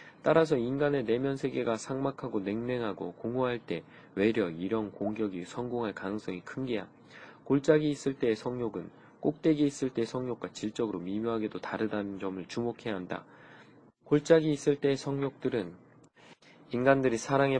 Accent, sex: native, male